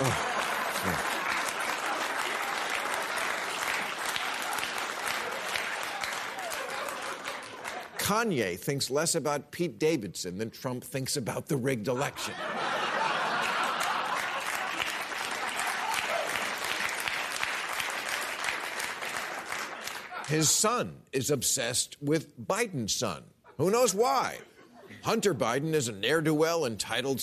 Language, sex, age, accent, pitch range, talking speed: English, male, 50-69, American, 125-155 Hz, 65 wpm